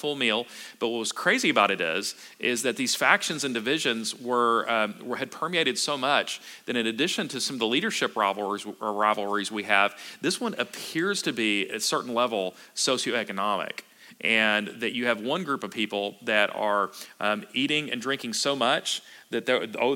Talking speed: 190 wpm